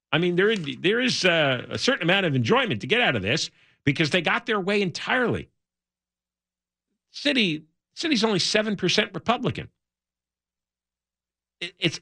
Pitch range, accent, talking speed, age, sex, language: 140-210 Hz, American, 140 wpm, 50-69, male, English